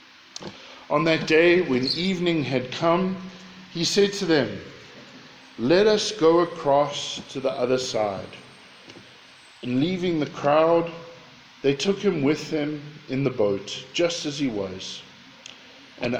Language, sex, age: English, male, 50-69